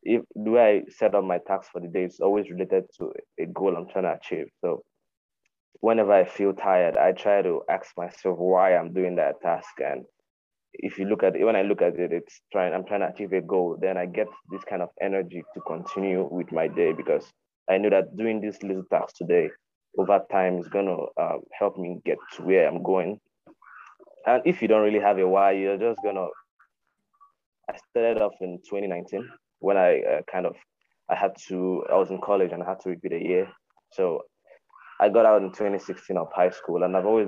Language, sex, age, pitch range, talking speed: English, male, 20-39, 90-105 Hz, 215 wpm